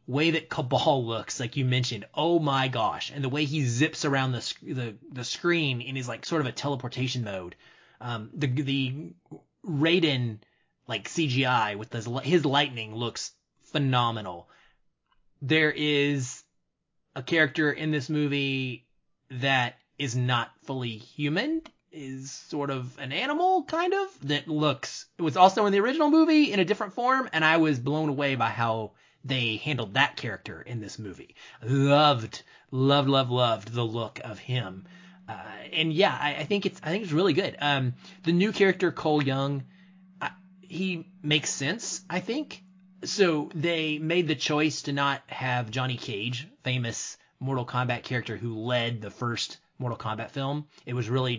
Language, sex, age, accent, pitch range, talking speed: English, male, 20-39, American, 125-160 Hz, 165 wpm